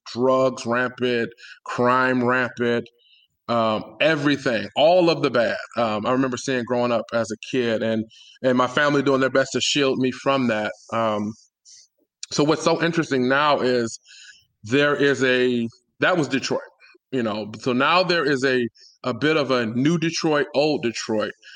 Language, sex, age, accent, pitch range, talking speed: English, male, 20-39, American, 125-150 Hz, 165 wpm